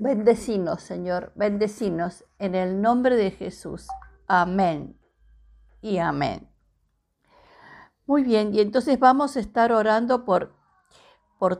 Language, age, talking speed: Spanish, 50-69, 110 wpm